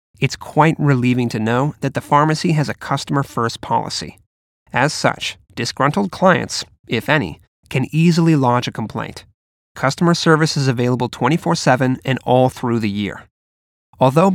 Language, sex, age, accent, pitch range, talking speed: English, male, 30-49, American, 120-160 Hz, 140 wpm